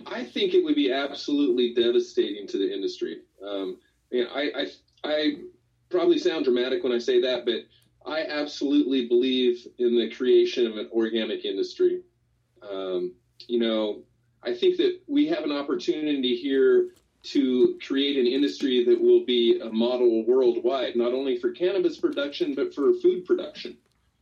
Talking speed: 160 wpm